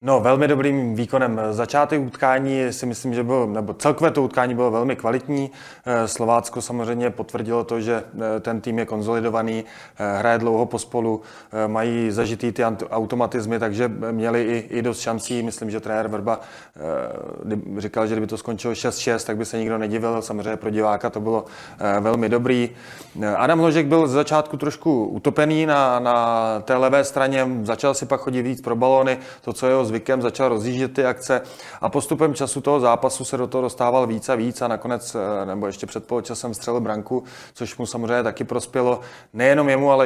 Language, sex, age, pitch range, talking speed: Czech, male, 20-39, 110-130 Hz, 170 wpm